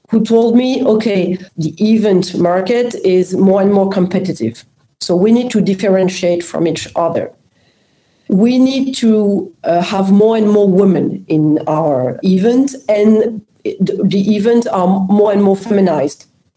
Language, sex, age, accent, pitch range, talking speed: English, female, 40-59, French, 170-220 Hz, 145 wpm